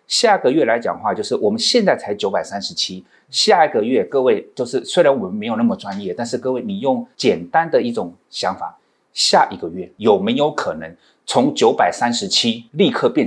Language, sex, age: Chinese, male, 30-49